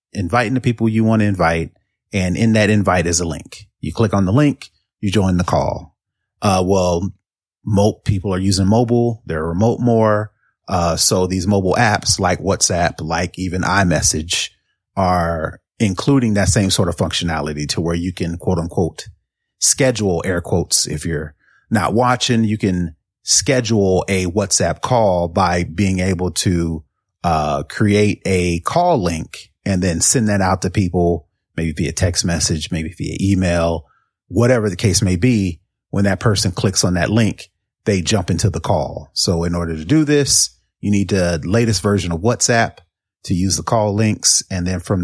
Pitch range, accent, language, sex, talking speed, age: 85-105 Hz, American, English, male, 175 wpm, 30-49